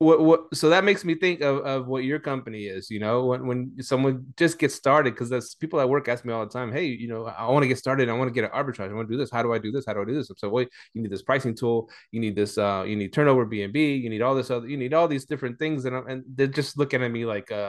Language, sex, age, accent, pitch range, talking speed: English, male, 20-39, American, 115-145 Hz, 330 wpm